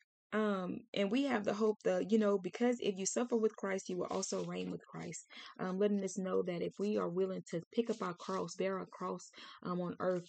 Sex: female